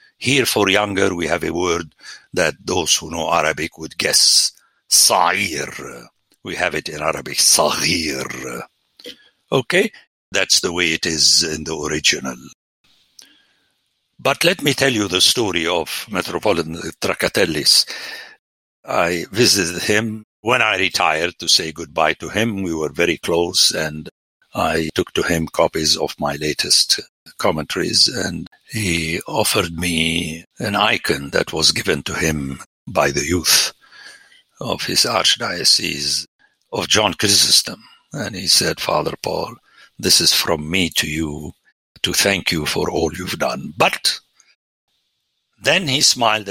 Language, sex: English, male